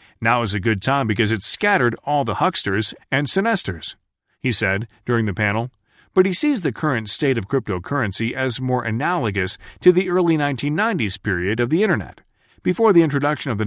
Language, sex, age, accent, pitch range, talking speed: English, male, 40-59, American, 105-145 Hz, 185 wpm